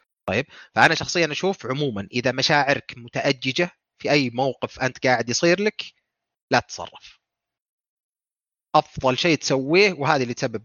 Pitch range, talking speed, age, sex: 115-145 Hz, 130 wpm, 30-49, male